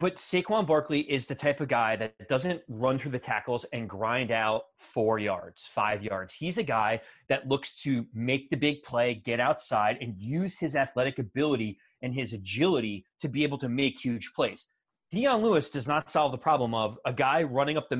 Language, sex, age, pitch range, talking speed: English, male, 30-49, 120-150 Hz, 205 wpm